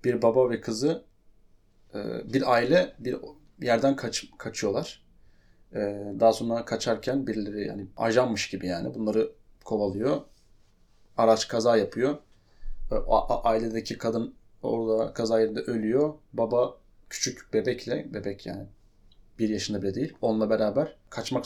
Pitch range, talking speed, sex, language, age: 100-125 Hz, 110 wpm, male, Turkish, 30-49